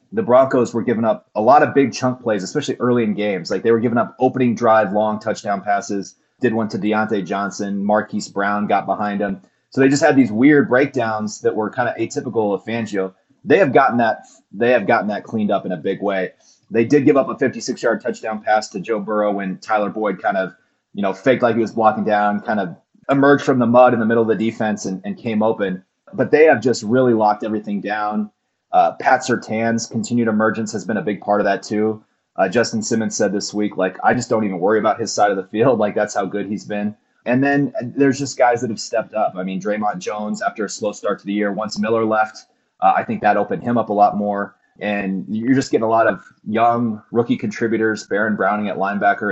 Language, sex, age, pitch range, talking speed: English, male, 30-49, 105-115 Hz, 235 wpm